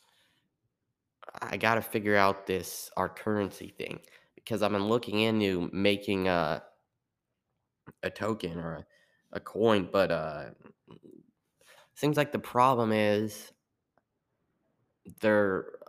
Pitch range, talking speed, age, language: 90-105 Hz, 110 wpm, 20-39, English